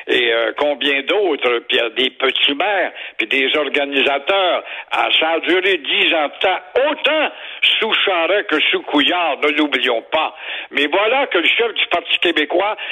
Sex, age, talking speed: male, 60-79, 165 wpm